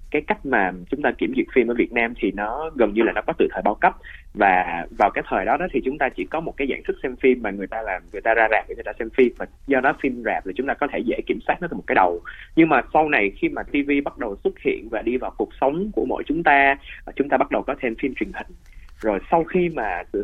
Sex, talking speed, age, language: male, 305 wpm, 20-39, Vietnamese